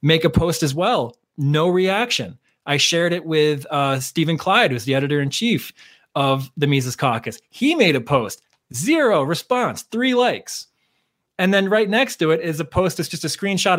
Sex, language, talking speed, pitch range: male, English, 185 wpm, 125-165 Hz